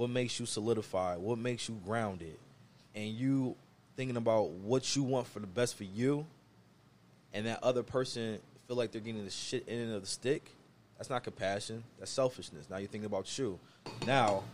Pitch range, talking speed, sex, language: 100-120 Hz, 190 wpm, male, English